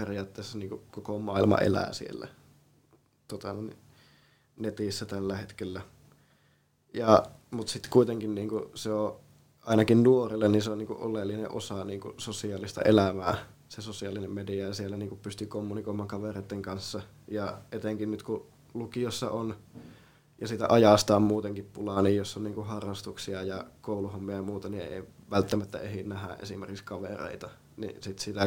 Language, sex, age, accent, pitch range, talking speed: Finnish, male, 20-39, native, 100-110 Hz, 150 wpm